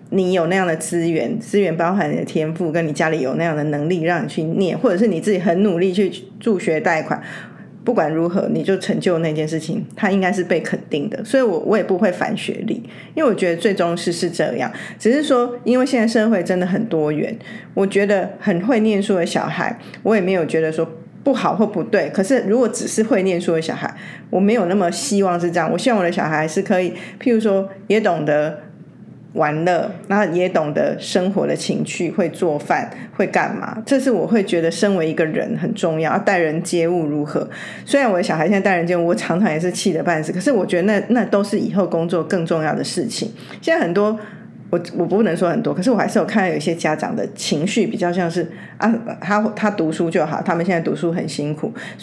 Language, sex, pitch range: Chinese, female, 170-210 Hz